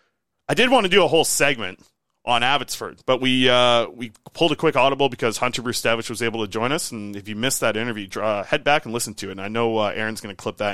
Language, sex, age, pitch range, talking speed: English, male, 30-49, 110-130 Hz, 270 wpm